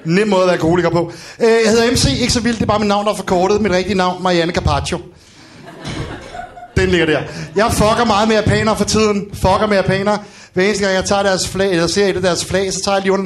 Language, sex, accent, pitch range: Danish, male, native, 175-210 Hz